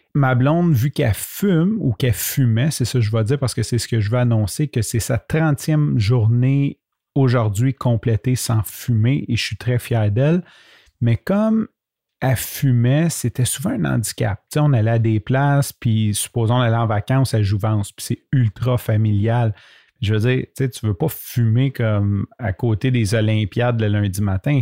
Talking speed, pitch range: 195 wpm, 110-135 Hz